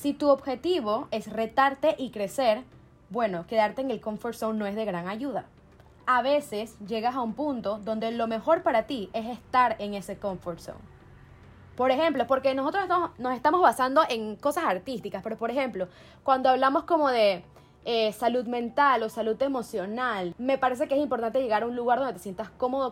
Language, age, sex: Spanish, 10-29, female